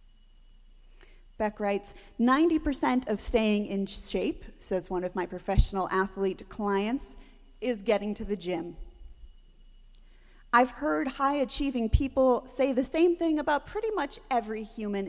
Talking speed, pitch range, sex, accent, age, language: 130 wpm, 190-265 Hz, female, American, 30-49, English